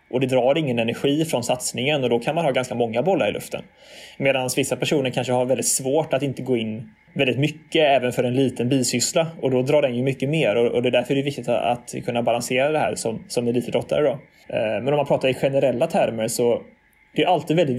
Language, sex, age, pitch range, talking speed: Swedish, male, 20-39, 125-150 Hz, 240 wpm